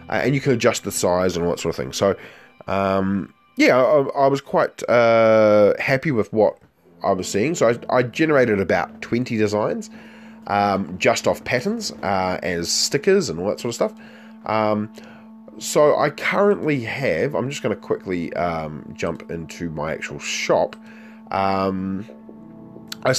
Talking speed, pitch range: 170 wpm, 90-125 Hz